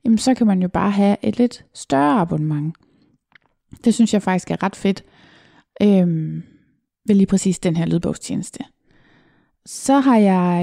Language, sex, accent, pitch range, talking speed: Danish, female, native, 180-230 Hz, 160 wpm